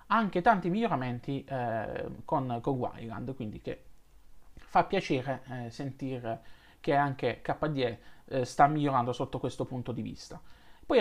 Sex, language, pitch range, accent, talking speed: male, Italian, 120-160 Hz, native, 130 wpm